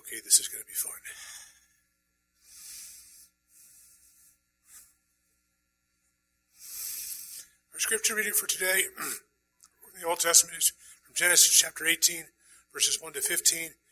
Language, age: English, 50-69